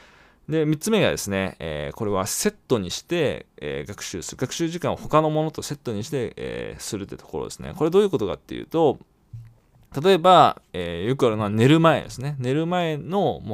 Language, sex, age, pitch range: Japanese, male, 20-39, 110-155 Hz